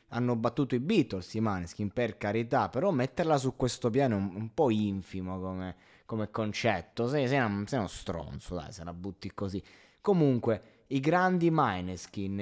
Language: Italian